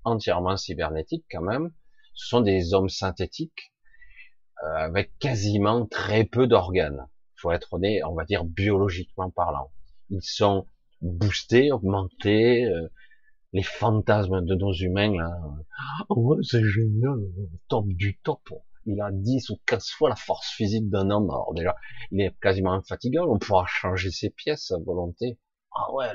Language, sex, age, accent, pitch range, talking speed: French, male, 30-49, French, 85-115 Hz, 160 wpm